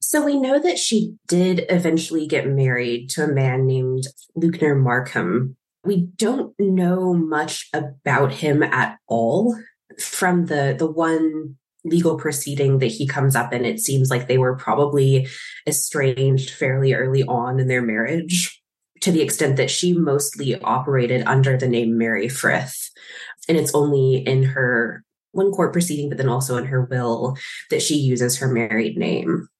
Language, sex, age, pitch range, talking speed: English, female, 20-39, 130-170 Hz, 160 wpm